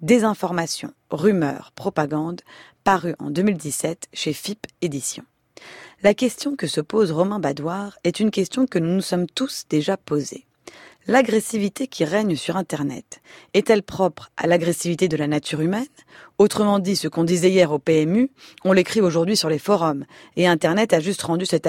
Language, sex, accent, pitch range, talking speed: French, female, French, 165-210 Hz, 165 wpm